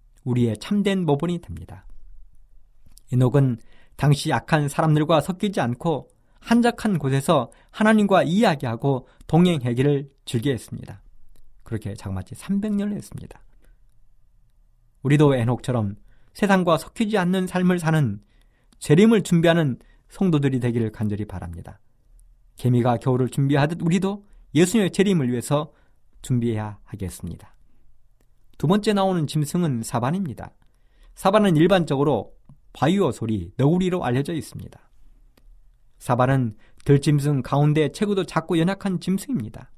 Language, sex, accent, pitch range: Korean, male, native, 120-175 Hz